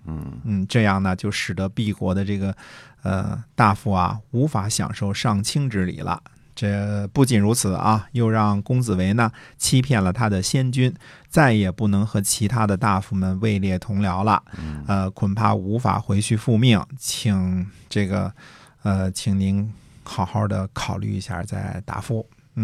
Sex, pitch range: male, 100-120 Hz